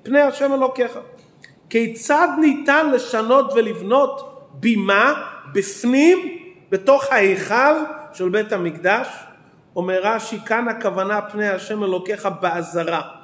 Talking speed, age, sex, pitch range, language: 95 wpm, 40-59, male, 200-260 Hz, Hebrew